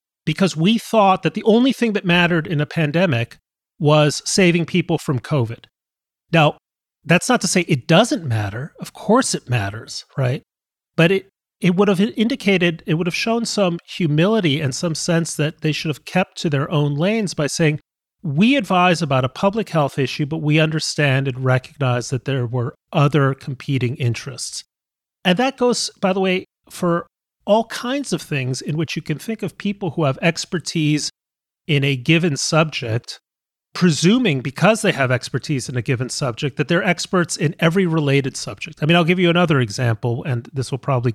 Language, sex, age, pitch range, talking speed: English, male, 30-49, 135-180 Hz, 185 wpm